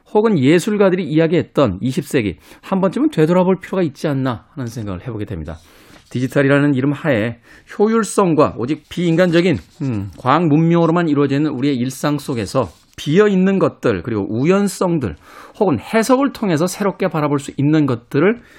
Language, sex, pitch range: Korean, male, 115-175 Hz